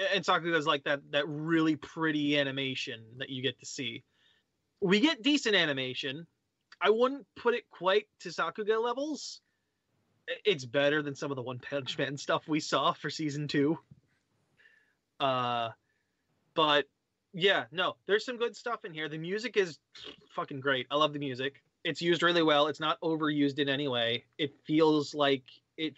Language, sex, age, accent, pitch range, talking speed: English, male, 20-39, American, 135-160 Hz, 170 wpm